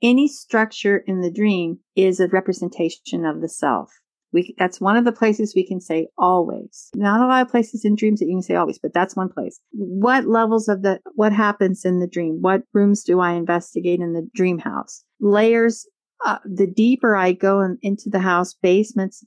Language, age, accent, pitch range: English, 50-69, American, 175-215 Hz